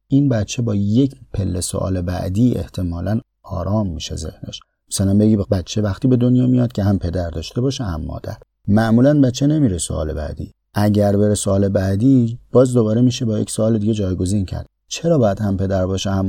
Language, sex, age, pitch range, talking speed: Persian, male, 30-49, 85-115 Hz, 180 wpm